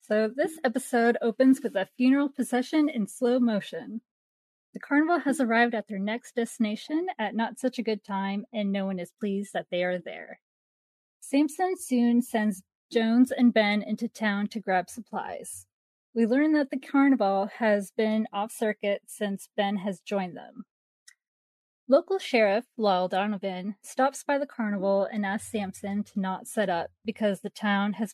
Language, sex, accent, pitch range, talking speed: English, female, American, 195-245 Hz, 165 wpm